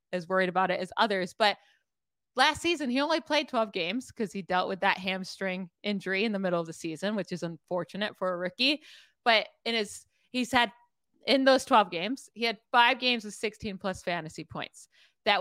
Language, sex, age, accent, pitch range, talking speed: English, female, 20-39, American, 190-250 Hz, 200 wpm